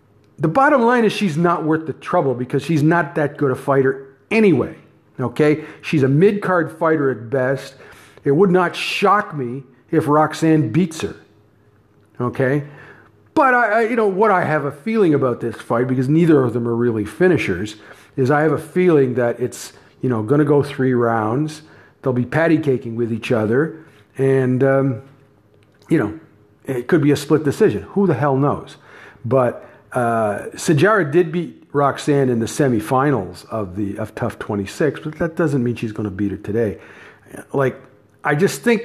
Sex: male